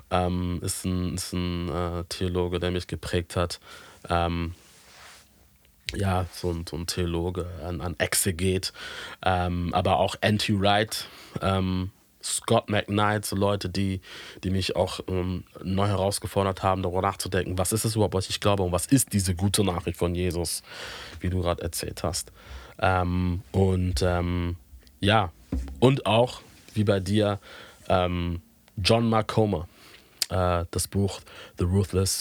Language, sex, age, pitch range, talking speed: German, male, 20-39, 85-100 Hz, 140 wpm